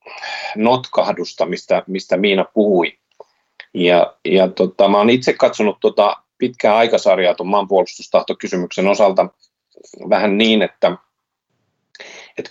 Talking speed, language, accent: 95 wpm, Finnish, native